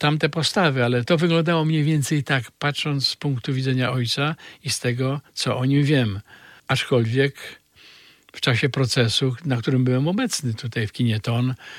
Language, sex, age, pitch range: Polish, male, 50-69, 120-155 Hz